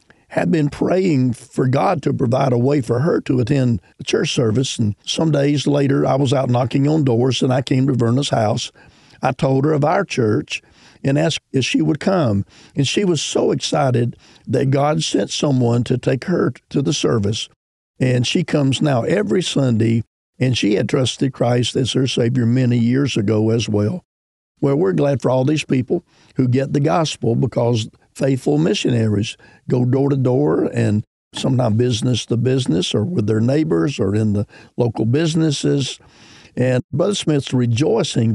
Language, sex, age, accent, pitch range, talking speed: English, male, 50-69, American, 115-145 Hz, 180 wpm